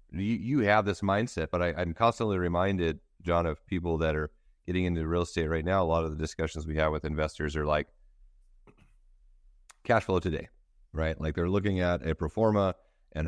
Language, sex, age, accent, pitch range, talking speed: English, male, 40-59, American, 75-85 Hz, 195 wpm